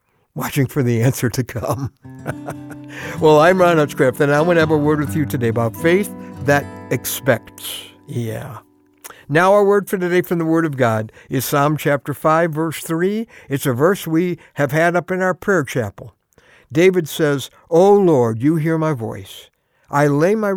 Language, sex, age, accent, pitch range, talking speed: English, male, 60-79, American, 125-165 Hz, 185 wpm